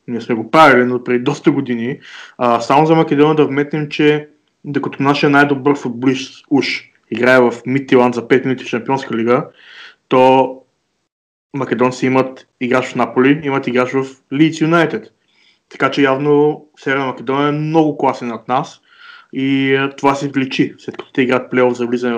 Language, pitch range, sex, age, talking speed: Bulgarian, 130-150 Hz, male, 20-39, 170 wpm